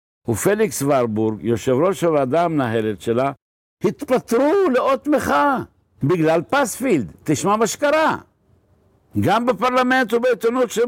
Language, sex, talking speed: Hebrew, male, 100 wpm